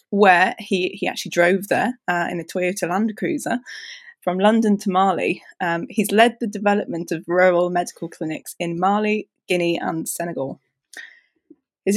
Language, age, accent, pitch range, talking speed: English, 20-39, British, 175-225 Hz, 155 wpm